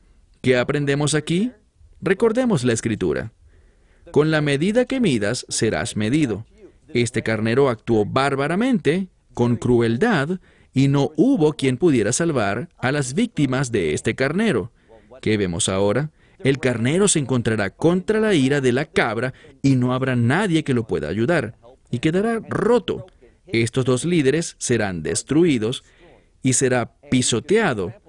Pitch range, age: 120-160 Hz, 40-59